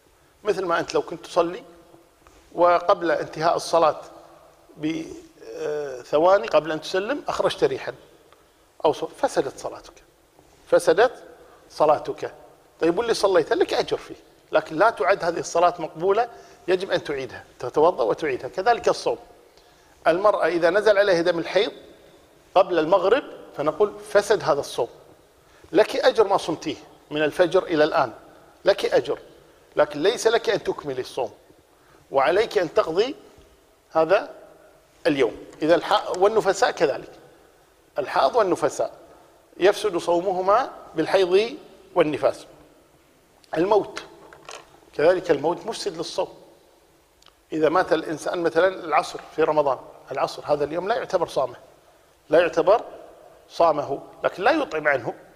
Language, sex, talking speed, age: Arabic, male, 115 wpm, 50-69